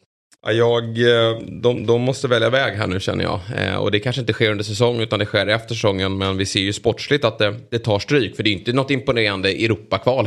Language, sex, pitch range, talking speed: Swedish, male, 95-115 Hz, 220 wpm